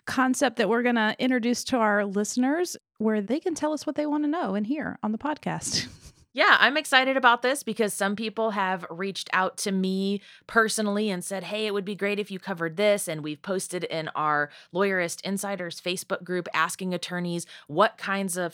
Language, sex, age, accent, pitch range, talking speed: English, female, 30-49, American, 180-235 Hz, 205 wpm